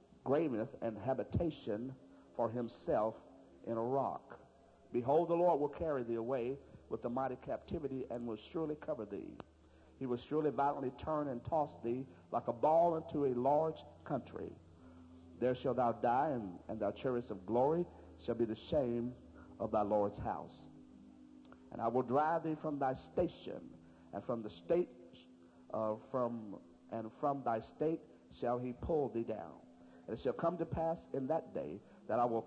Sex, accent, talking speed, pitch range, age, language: male, American, 165 wpm, 110-145 Hz, 50-69, English